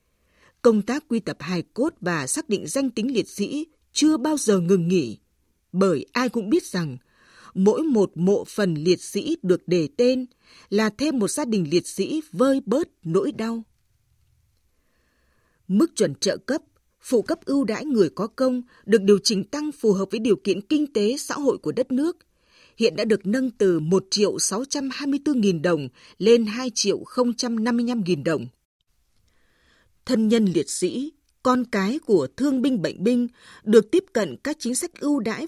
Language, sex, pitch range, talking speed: Vietnamese, female, 180-260 Hz, 175 wpm